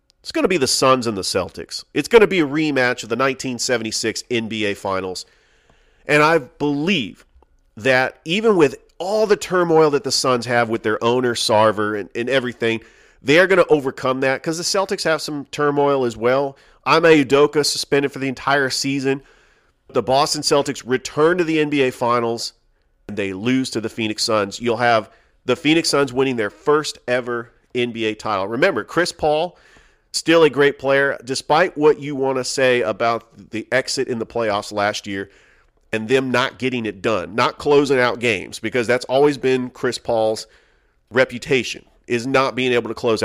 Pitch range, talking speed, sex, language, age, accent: 115-140 Hz, 180 wpm, male, English, 40-59, American